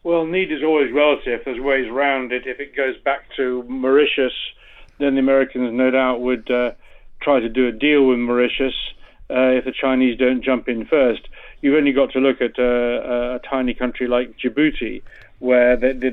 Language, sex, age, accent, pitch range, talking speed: English, male, 50-69, British, 125-140 Hz, 185 wpm